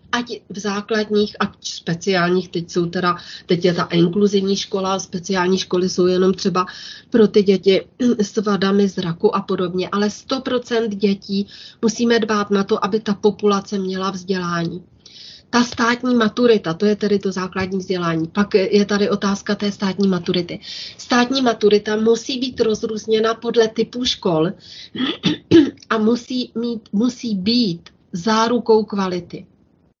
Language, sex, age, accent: Czech, female, 30-49, native